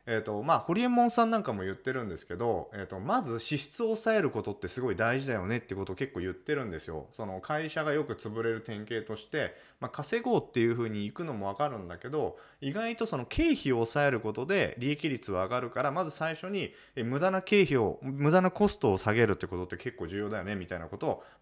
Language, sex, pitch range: Japanese, male, 100-165 Hz